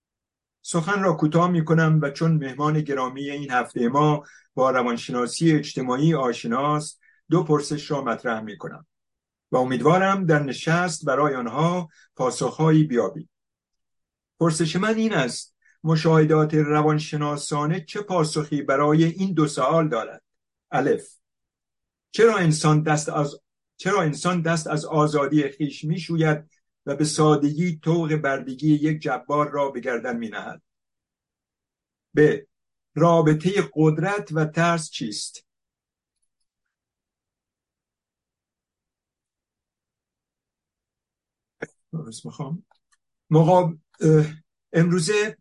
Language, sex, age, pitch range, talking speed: Persian, male, 50-69, 145-165 Hz, 100 wpm